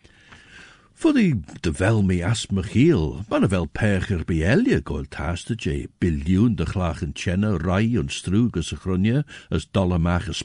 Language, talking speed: English, 145 wpm